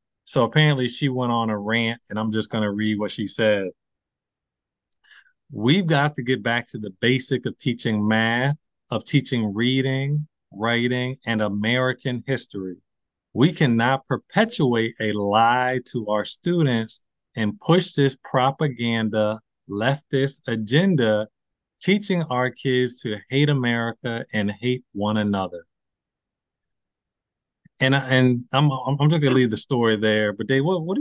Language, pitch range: English, 105-135 Hz